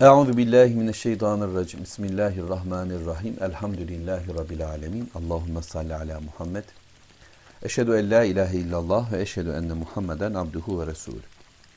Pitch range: 90-120 Hz